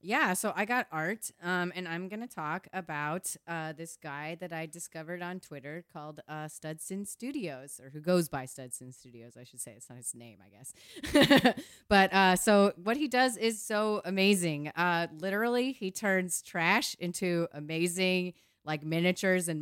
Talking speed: 175 wpm